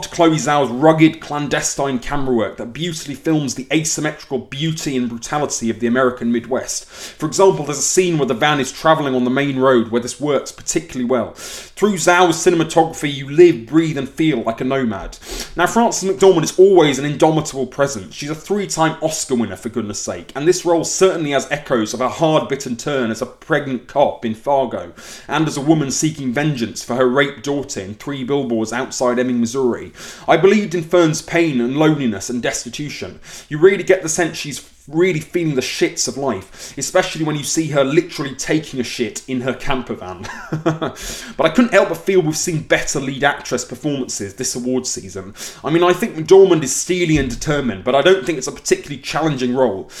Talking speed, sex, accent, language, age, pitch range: 195 wpm, male, British, English, 30-49, 125-160 Hz